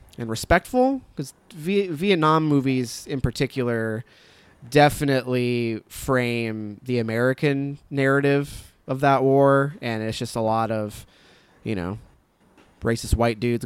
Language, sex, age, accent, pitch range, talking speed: English, male, 20-39, American, 110-135 Hz, 120 wpm